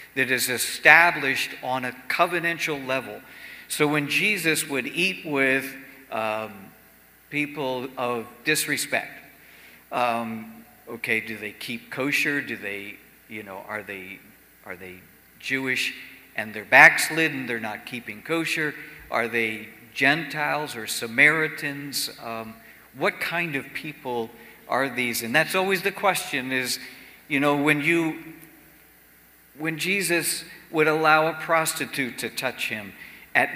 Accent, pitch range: American, 115-150 Hz